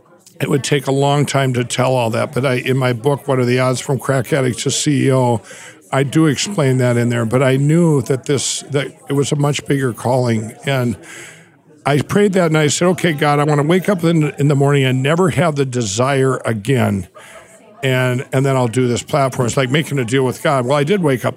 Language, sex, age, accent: English, male, 60-79, American